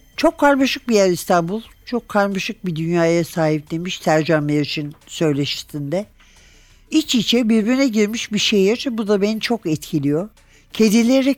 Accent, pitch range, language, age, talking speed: native, 155-215 Hz, Turkish, 60-79, 135 wpm